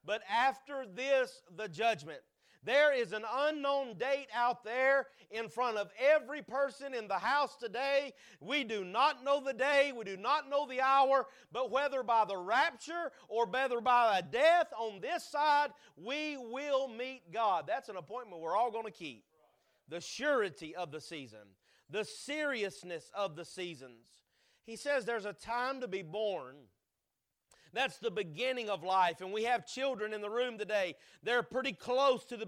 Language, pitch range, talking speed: English, 215-270 Hz, 175 wpm